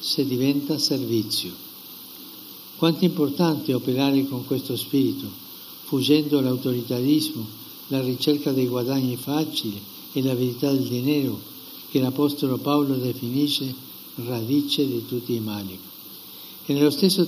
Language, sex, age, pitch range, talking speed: Italian, male, 60-79, 130-155 Hz, 120 wpm